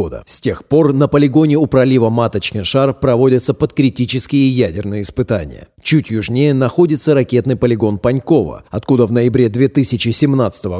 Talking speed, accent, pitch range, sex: 130 wpm, native, 115-140 Hz, male